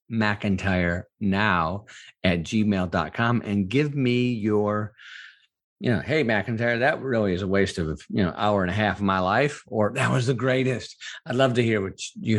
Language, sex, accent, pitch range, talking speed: English, male, American, 100-125 Hz, 185 wpm